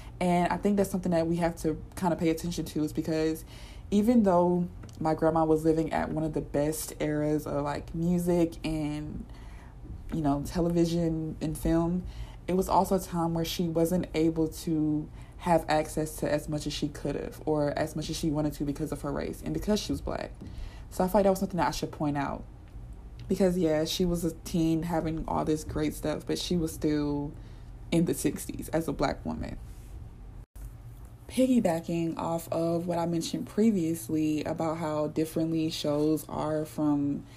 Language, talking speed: English, 190 wpm